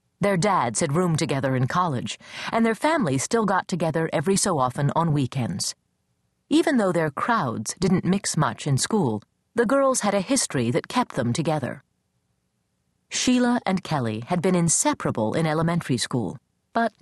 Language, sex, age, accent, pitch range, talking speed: English, female, 40-59, American, 140-210 Hz, 160 wpm